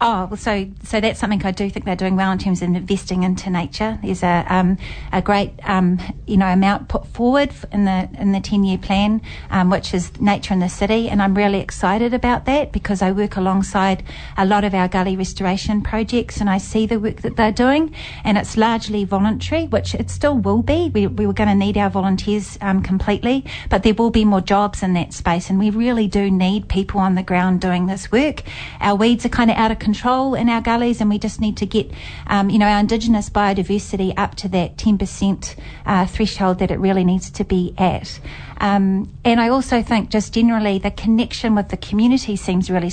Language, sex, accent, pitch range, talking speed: English, female, Australian, 190-225 Hz, 220 wpm